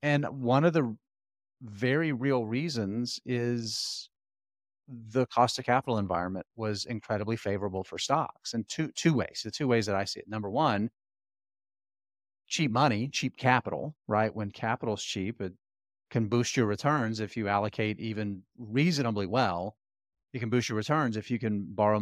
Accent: American